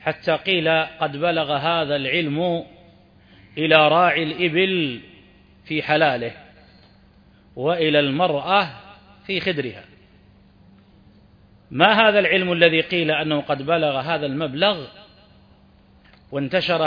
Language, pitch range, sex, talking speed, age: Arabic, 145-175 Hz, male, 95 wpm, 40-59